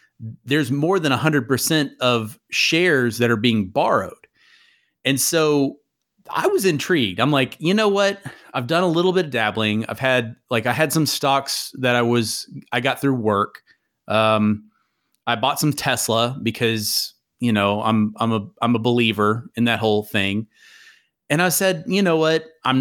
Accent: American